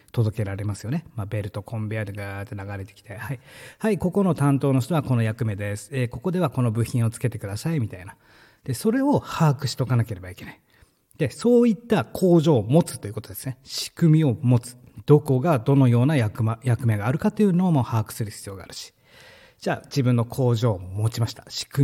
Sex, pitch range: male, 110-155 Hz